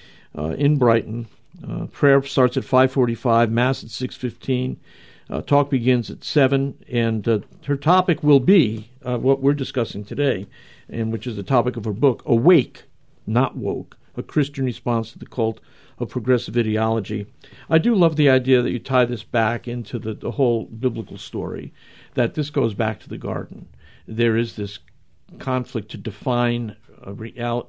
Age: 50-69